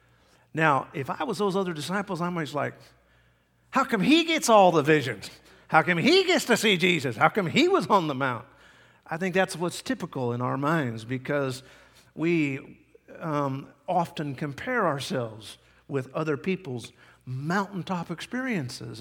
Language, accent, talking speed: English, American, 160 wpm